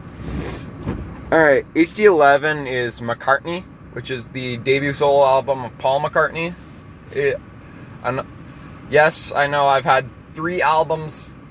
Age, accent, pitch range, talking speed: 20-39, American, 140-170 Hz, 120 wpm